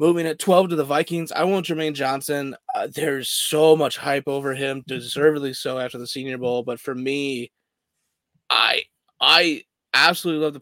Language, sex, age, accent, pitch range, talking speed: English, male, 20-39, American, 125-155 Hz, 175 wpm